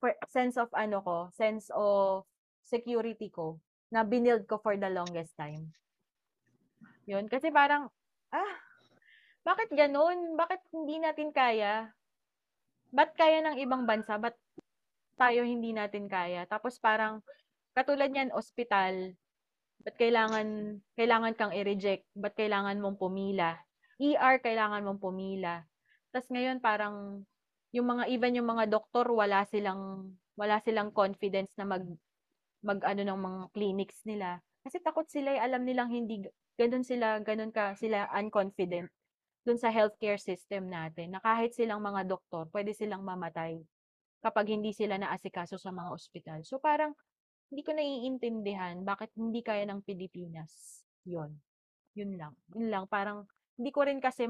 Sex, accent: female, native